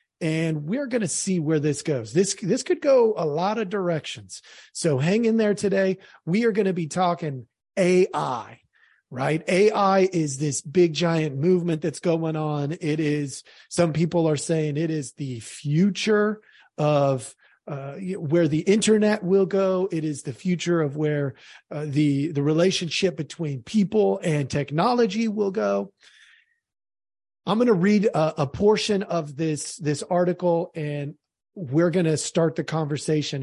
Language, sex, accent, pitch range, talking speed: English, male, American, 145-190 Hz, 160 wpm